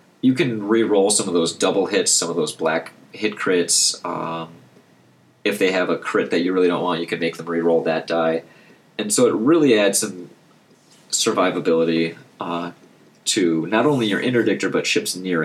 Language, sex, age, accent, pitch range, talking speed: English, male, 30-49, American, 85-115 Hz, 185 wpm